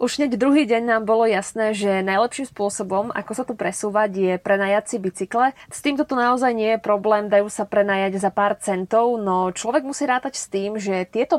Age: 20-39